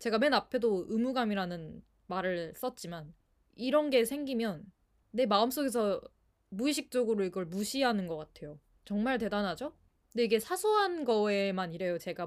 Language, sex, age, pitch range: Korean, female, 20-39, 185-250 Hz